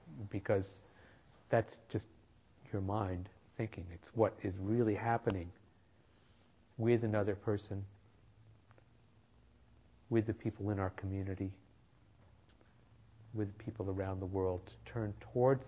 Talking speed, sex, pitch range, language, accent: 105 wpm, male, 100-110 Hz, English, American